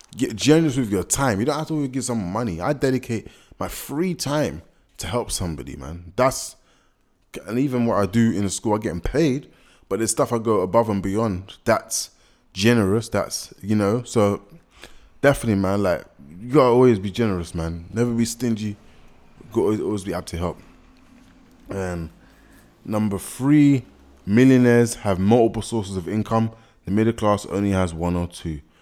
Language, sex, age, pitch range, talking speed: English, male, 20-39, 95-120 Hz, 175 wpm